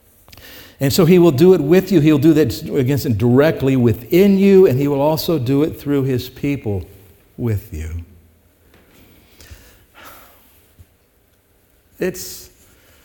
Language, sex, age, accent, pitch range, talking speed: English, male, 60-79, American, 95-130 Hz, 130 wpm